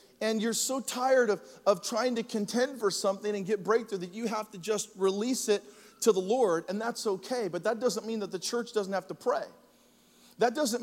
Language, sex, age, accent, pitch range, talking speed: English, male, 40-59, American, 215-260 Hz, 220 wpm